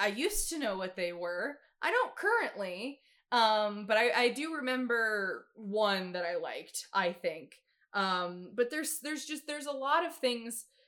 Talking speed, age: 175 wpm, 20-39